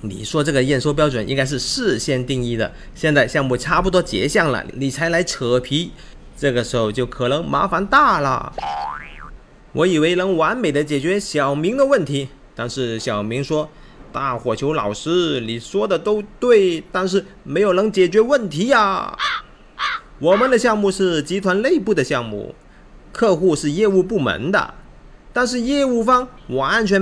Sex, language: male, Chinese